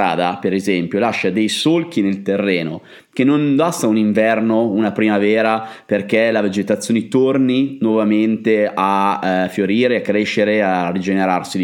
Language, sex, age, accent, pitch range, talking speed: Italian, male, 30-49, native, 100-120 Hz, 135 wpm